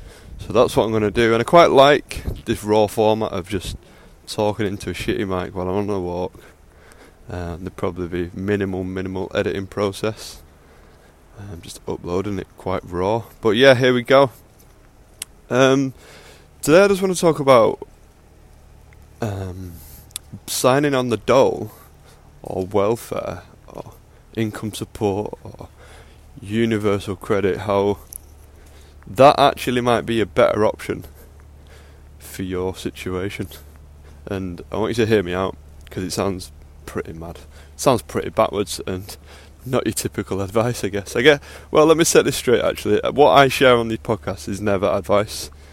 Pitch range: 75-105 Hz